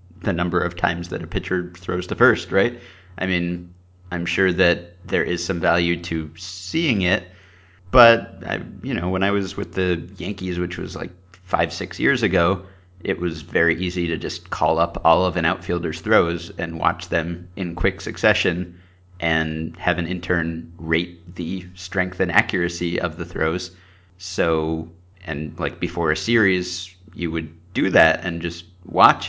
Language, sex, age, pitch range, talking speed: English, male, 30-49, 85-95 Hz, 170 wpm